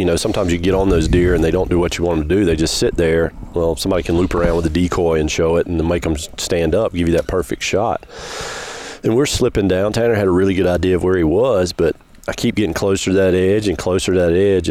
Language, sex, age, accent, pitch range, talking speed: English, male, 40-59, American, 90-105 Hz, 290 wpm